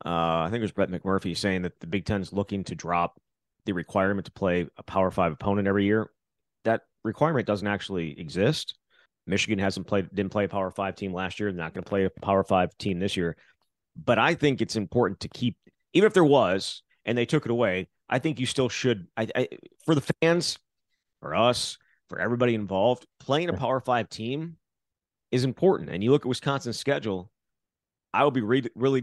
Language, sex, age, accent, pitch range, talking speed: English, male, 30-49, American, 95-120 Hz, 210 wpm